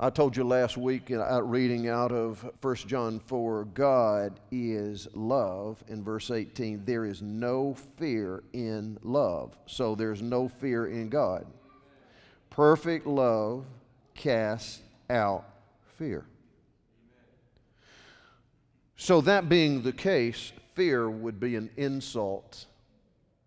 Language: English